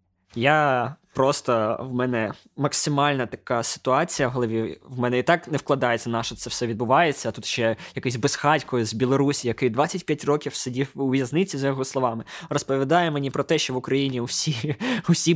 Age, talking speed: 20-39, 175 wpm